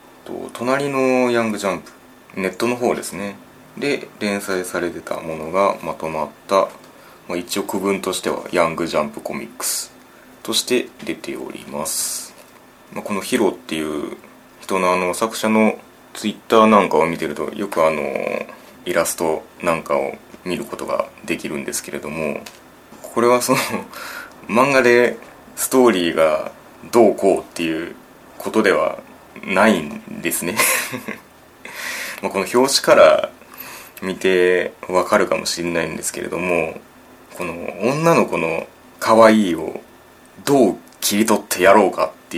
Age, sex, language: 20-39, male, Japanese